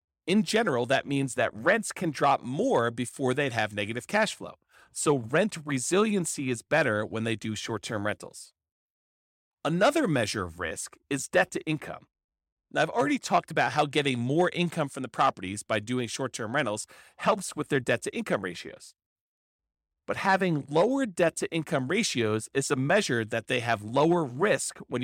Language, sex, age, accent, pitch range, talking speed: English, male, 40-59, American, 110-170 Hz, 160 wpm